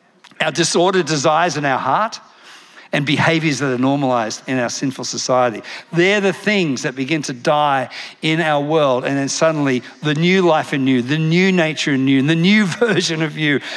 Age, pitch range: 50-69, 135-170 Hz